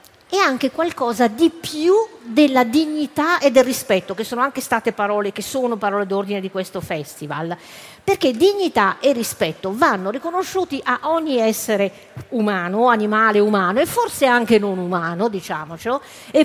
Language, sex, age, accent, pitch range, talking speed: Italian, female, 50-69, native, 205-300 Hz, 155 wpm